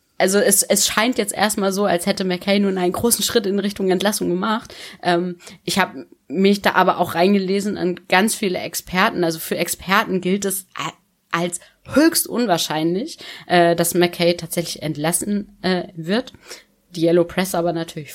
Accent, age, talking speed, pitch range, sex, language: German, 20-39, 165 wpm, 150-195 Hz, female, German